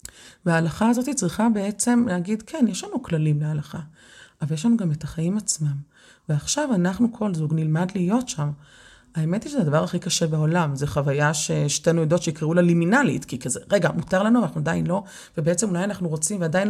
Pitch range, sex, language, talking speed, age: 155-195 Hz, female, Hebrew, 185 wpm, 30-49